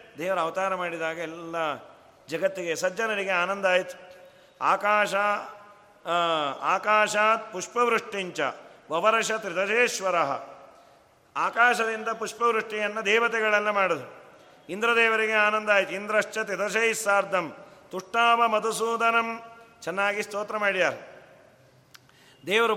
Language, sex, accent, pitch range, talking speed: Kannada, male, native, 170-210 Hz, 75 wpm